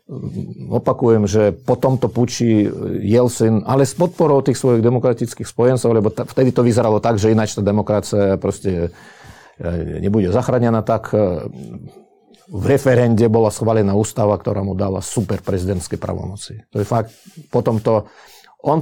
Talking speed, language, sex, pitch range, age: 135 wpm, Slovak, male, 105-125 Hz, 40-59